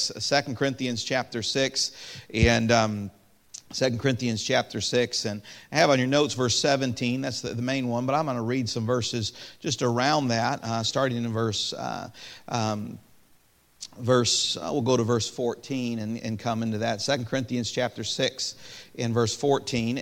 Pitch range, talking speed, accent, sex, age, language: 115-140 Hz, 175 wpm, American, male, 50-69, English